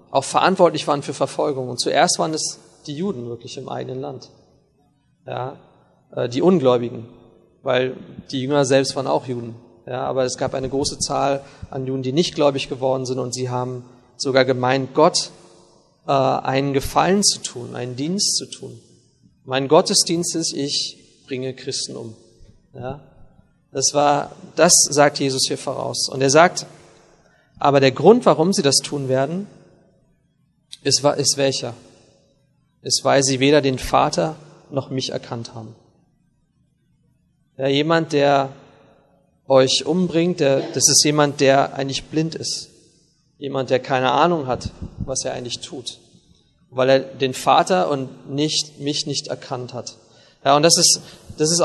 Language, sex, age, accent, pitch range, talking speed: German, male, 40-59, German, 130-155 Hz, 150 wpm